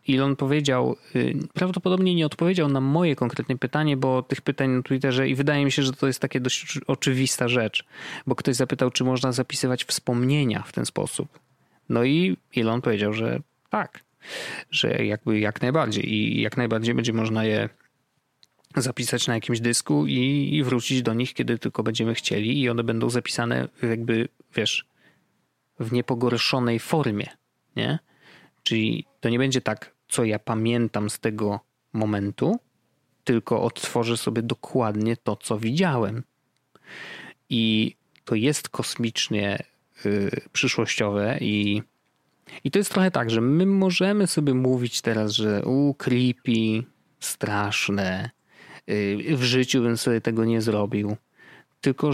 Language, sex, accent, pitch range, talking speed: Polish, male, native, 115-140 Hz, 135 wpm